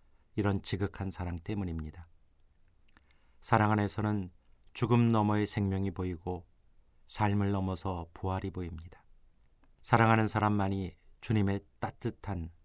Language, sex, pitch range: Korean, male, 85-105 Hz